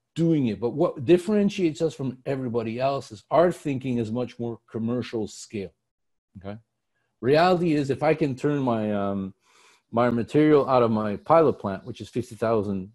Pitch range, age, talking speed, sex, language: 100-130 Hz, 50-69, 165 wpm, male, English